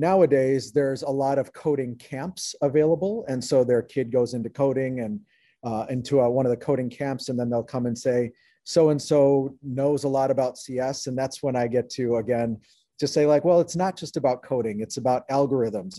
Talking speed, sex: 205 wpm, male